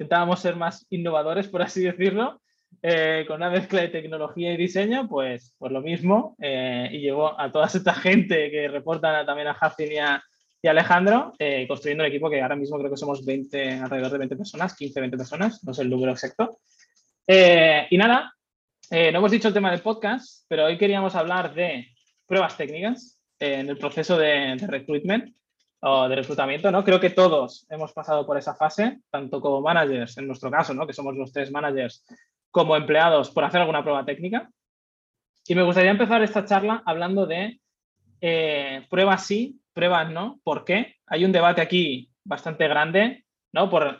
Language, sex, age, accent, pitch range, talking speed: Spanish, male, 20-39, Spanish, 145-190 Hz, 185 wpm